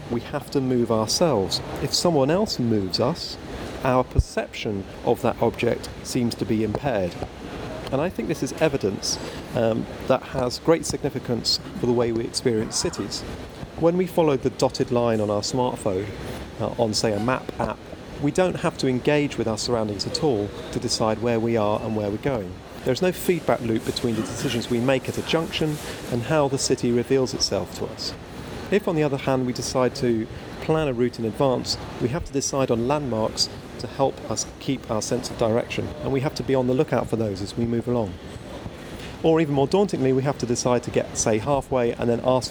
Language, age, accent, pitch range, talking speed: English, 40-59, British, 110-135 Hz, 205 wpm